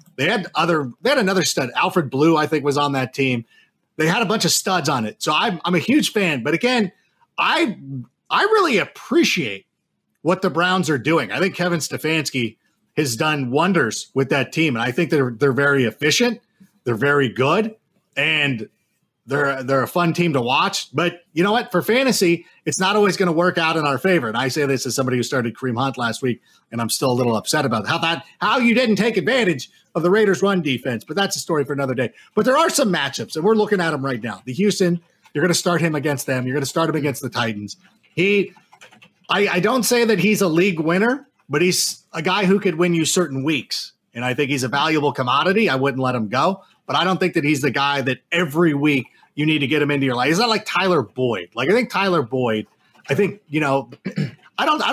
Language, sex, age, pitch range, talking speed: English, male, 30-49, 135-190 Hz, 240 wpm